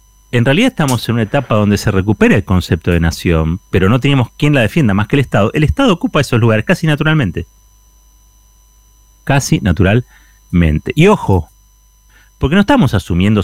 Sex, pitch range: male, 95-130 Hz